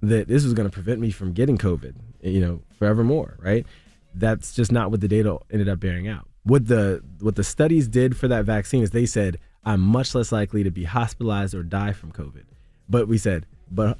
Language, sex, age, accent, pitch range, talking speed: English, male, 20-39, American, 95-120 Hz, 210 wpm